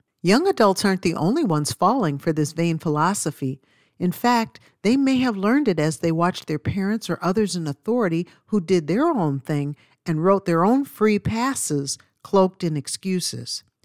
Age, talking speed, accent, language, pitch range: 50-69, 180 wpm, American, English, 150-205 Hz